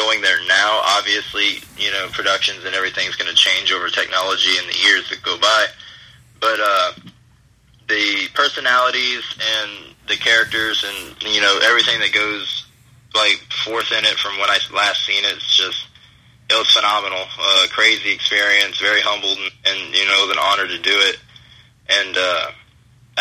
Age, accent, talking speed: 20-39, American, 170 wpm